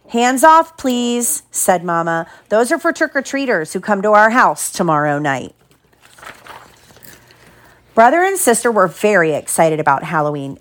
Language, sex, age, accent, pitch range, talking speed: English, female, 40-59, American, 170-255 Hz, 135 wpm